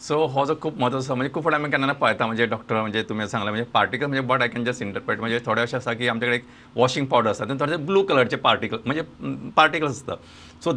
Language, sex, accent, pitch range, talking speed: English, male, Indian, 120-155 Hz, 105 wpm